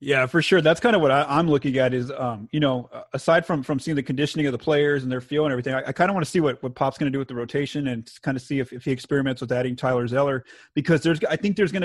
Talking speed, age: 320 wpm, 30-49